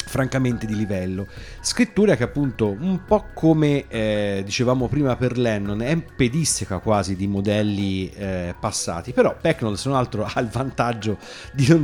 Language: Italian